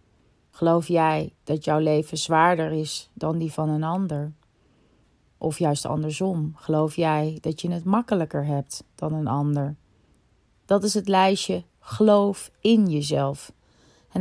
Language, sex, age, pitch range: Dutch, female, 30-49, 155-190 Hz